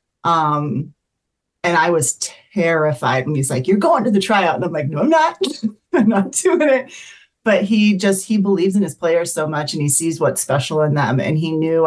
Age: 30-49